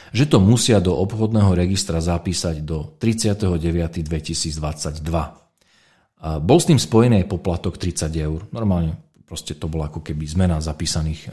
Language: Slovak